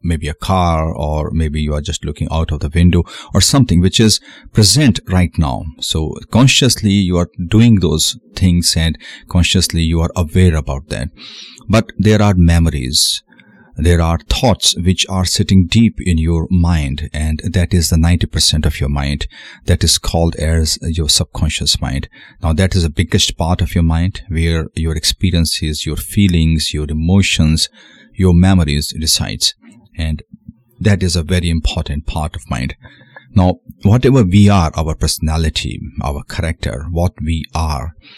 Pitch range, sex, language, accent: 80-95 Hz, male, Hindi, native